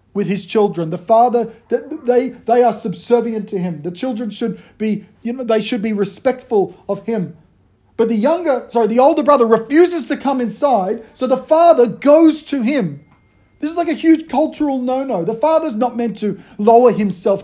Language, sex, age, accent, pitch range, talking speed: English, male, 40-59, Australian, 180-240 Hz, 190 wpm